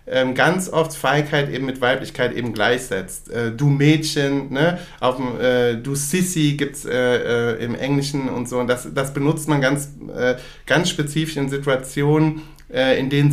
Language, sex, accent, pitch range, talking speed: German, male, German, 125-145 Hz, 175 wpm